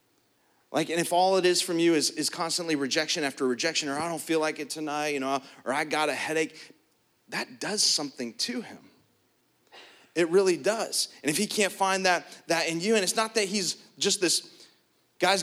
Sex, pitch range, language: male, 150-210 Hz, English